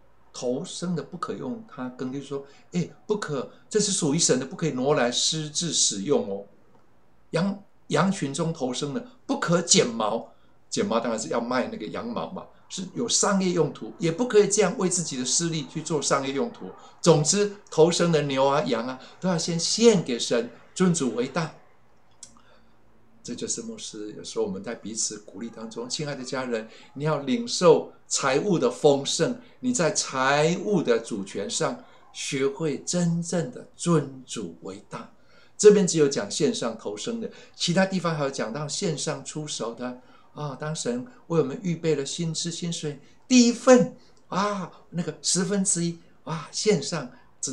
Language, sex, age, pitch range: Chinese, male, 60-79, 140-190 Hz